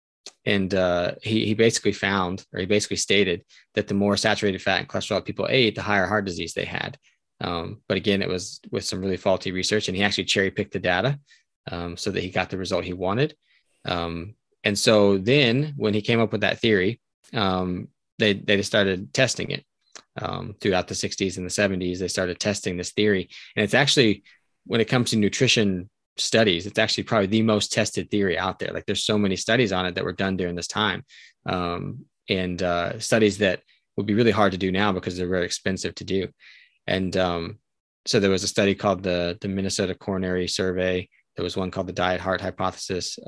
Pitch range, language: 90-105 Hz, English